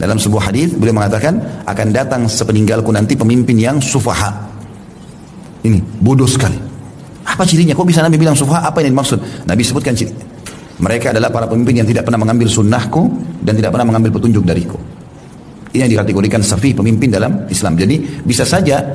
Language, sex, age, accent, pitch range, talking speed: Indonesian, male, 40-59, native, 110-140 Hz, 170 wpm